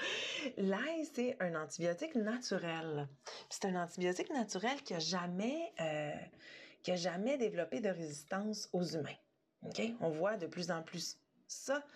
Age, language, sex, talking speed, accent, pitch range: 30-49, French, female, 135 wpm, Canadian, 170-240 Hz